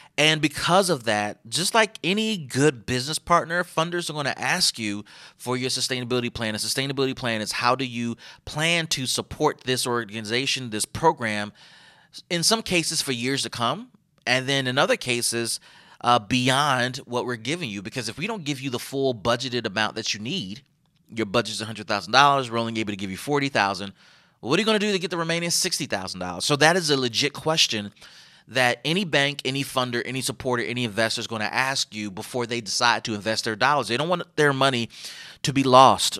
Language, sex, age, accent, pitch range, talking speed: English, male, 30-49, American, 115-155 Hz, 200 wpm